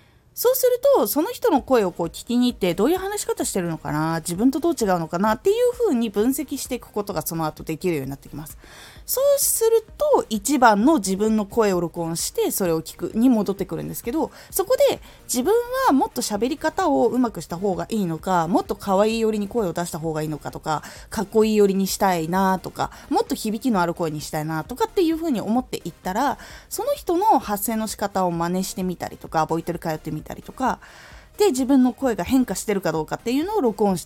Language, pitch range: Japanese, 175-285 Hz